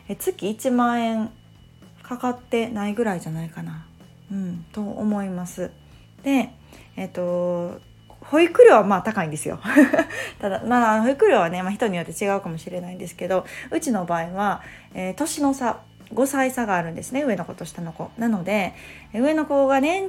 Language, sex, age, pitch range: Japanese, female, 20-39, 175-240 Hz